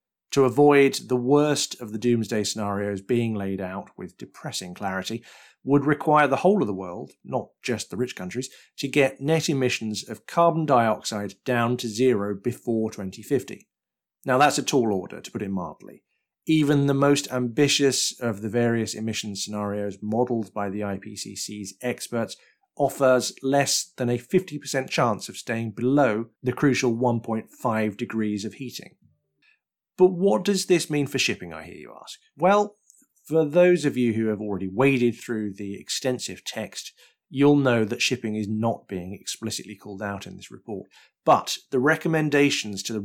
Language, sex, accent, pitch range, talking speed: English, male, British, 105-140 Hz, 165 wpm